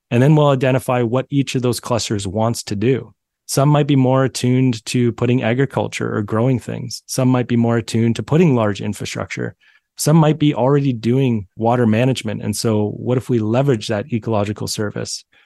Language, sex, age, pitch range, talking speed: English, male, 30-49, 110-130 Hz, 185 wpm